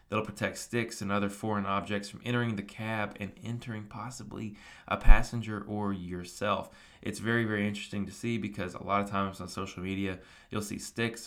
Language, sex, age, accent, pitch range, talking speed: English, male, 20-39, American, 95-110 Hz, 185 wpm